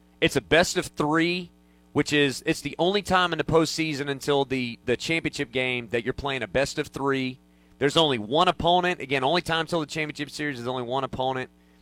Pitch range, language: 125-160 Hz, English